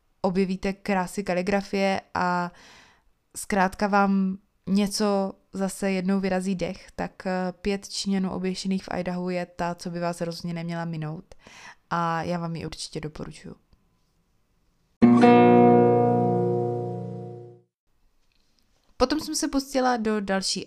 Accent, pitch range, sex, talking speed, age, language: native, 160-190 Hz, female, 105 wpm, 20-39, Czech